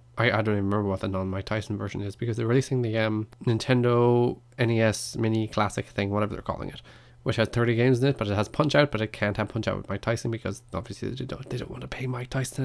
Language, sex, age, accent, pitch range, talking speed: English, male, 20-39, Irish, 110-140 Hz, 255 wpm